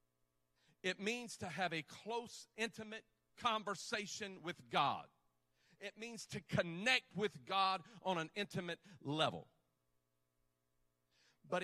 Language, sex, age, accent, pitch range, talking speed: English, male, 40-59, American, 150-210 Hz, 110 wpm